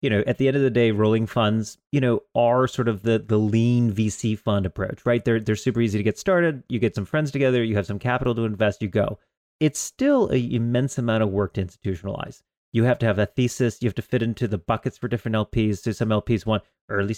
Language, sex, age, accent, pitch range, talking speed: English, male, 30-49, American, 110-135 Hz, 250 wpm